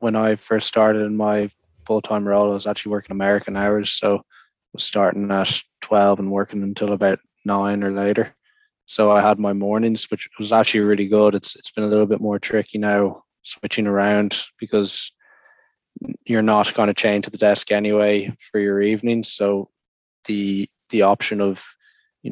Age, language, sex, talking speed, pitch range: 20-39, English, male, 185 wpm, 100-105 Hz